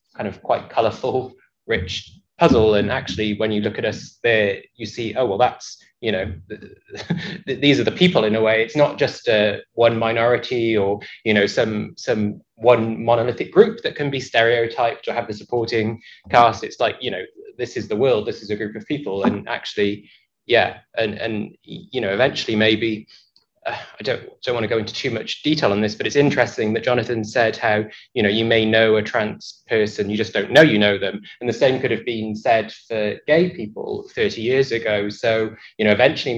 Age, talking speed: 20-39, 210 wpm